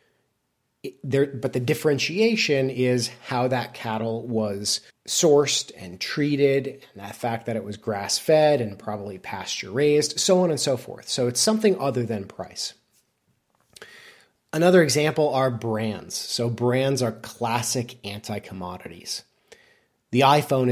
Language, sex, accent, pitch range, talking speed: English, male, American, 115-135 Hz, 130 wpm